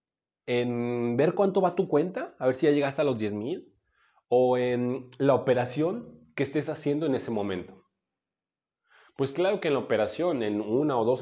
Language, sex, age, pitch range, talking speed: Spanish, male, 30-49, 115-160 Hz, 180 wpm